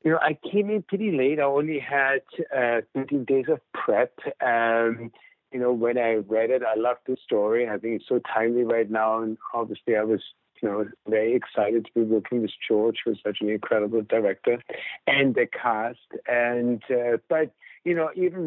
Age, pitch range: 50-69, 115-135 Hz